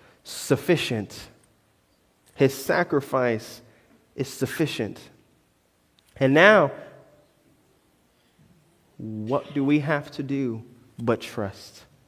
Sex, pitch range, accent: male, 125-185 Hz, American